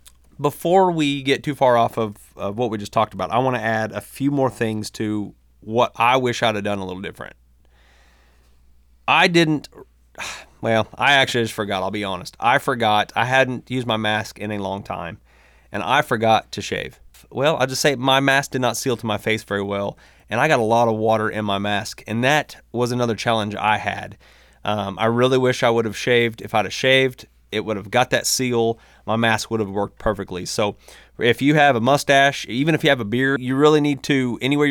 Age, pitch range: 30-49, 100-130 Hz